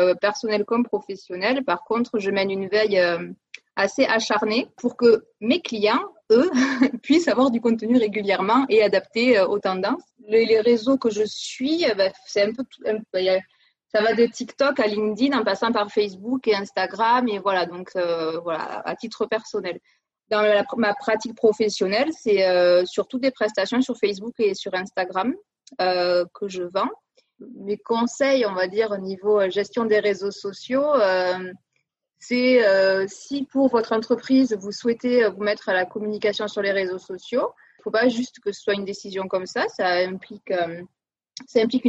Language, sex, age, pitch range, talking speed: English, female, 20-39, 195-245 Hz, 165 wpm